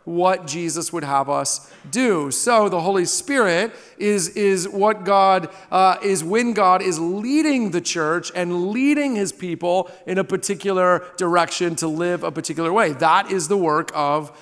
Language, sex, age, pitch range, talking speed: English, male, 40-59, 180-225 Hz, 165 wpm